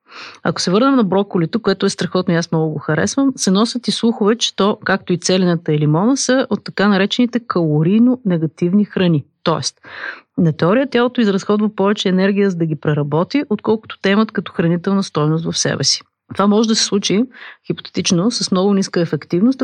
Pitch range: 170-220 Hz